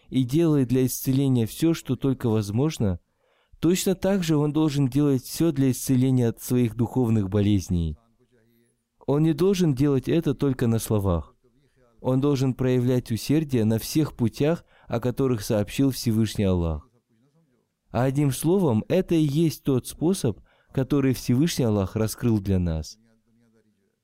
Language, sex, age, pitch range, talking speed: Russian, male, 20-39, 115-150 Hz, 135 wpm